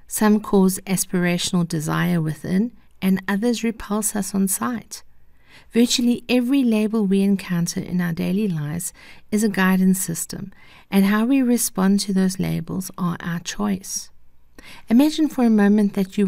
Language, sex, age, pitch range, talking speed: English, female, 50-69, 185-220 Hz, 145 wpm